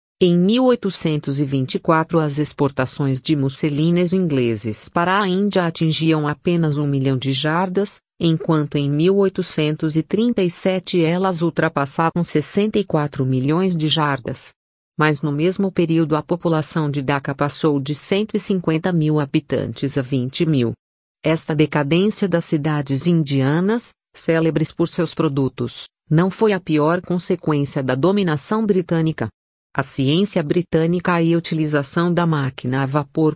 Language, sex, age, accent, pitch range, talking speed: Portuguese, female, 40-59, Brazilian, 145-180 Hz, 120 wpm